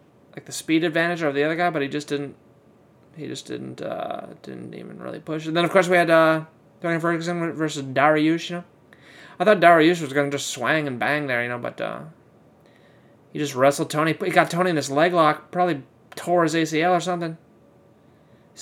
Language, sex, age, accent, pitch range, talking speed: English, male, 30-49, American, 140-170 Hz, 215 wpm